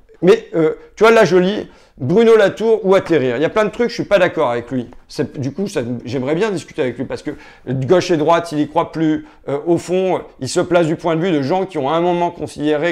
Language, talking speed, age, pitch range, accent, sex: French, 270 wpm, 50-69, 140-190 Hz, French, male